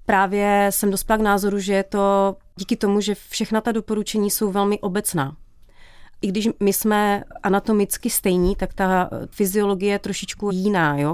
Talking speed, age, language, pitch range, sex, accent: 160 wpm, 30-49, Czech, 175-205 Hz, female, native